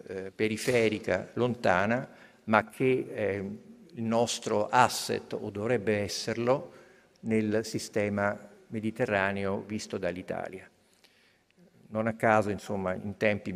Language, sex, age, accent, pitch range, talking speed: Italian, male, 50-69, native, 100-115 Hz, 95 wpm